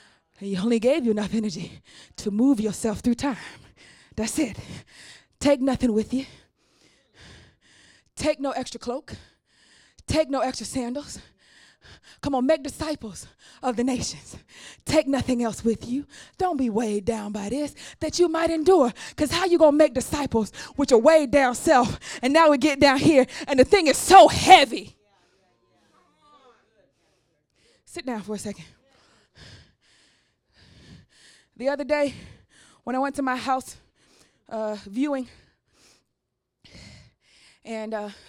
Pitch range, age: 220-285 Hz, 20-39